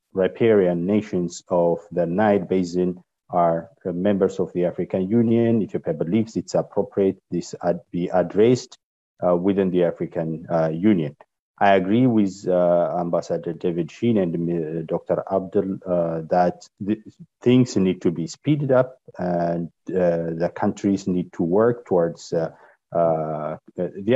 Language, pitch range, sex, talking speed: Arabic, 90-110 Hz, male, 140 wpm